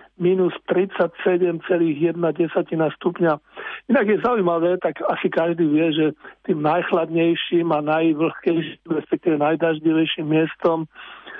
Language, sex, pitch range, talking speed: Slovak, male, 165-190 Hz, 95 wpm